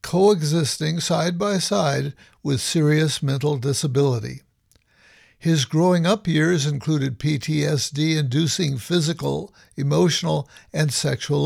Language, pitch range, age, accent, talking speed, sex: English, 135-170 Hz, 60-79, American, 95 wpm, male